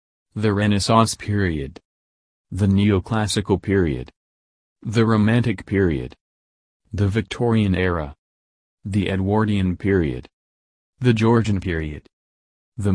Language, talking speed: English, 90 wpm